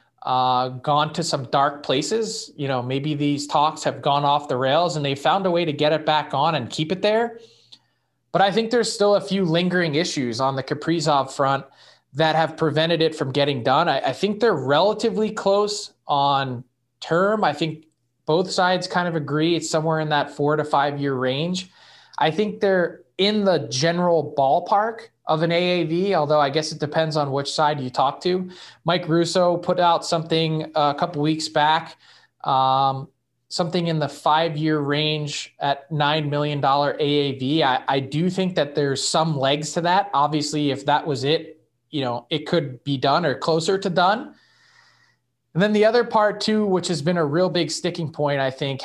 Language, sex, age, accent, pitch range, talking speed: English, male, 20-39, American, 140-180 Hz, 190 wpm